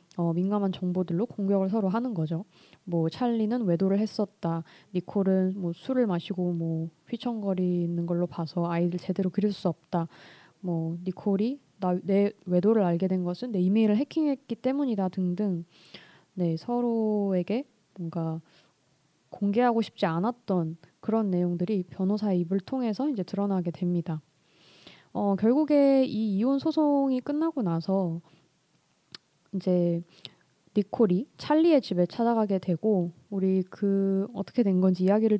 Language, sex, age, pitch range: Korean, female, 20-39, 175-215 Hz